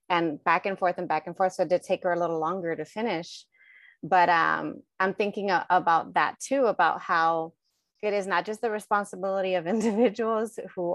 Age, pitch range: 30-49, 165-200 Hz